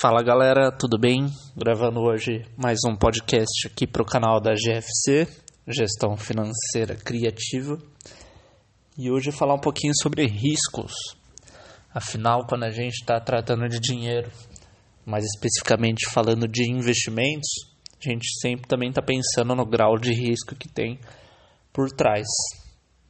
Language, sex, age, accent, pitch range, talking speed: English, male, 20-39, Brazilian, 115-130 Hz, 140 wpm